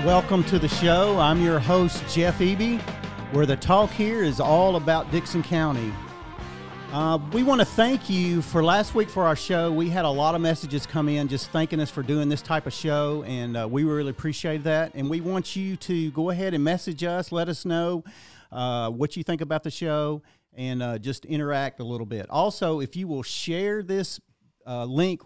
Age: 40-59